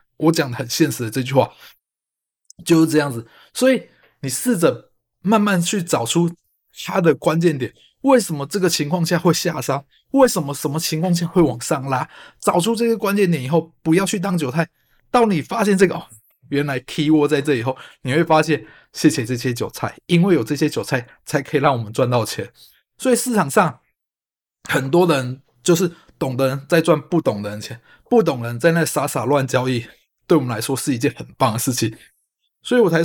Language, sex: Chinese, male